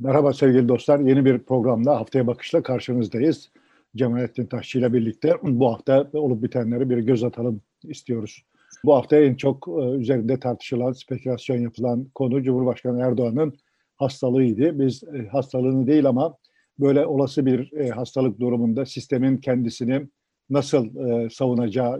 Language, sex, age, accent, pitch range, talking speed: Turkish, male, 50-69, native, 120-135 Hz, 125 wpm